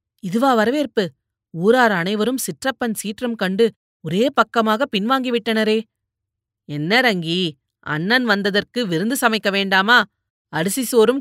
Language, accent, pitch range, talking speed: Tamil, native, 175-240 Hz, 100 wpm